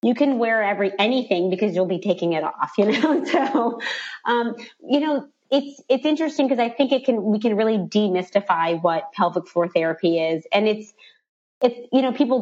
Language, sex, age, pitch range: English, female, 30-49, 175-230 Hz